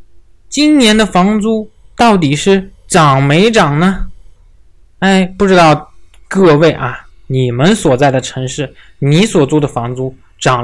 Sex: male